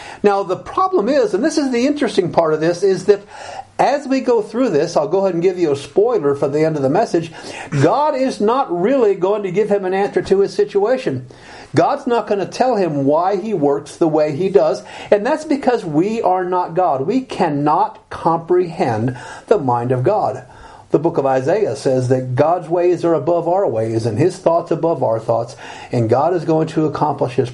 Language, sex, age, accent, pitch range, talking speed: English, male, 50-69, American, 130-195 Hz, 215 wpm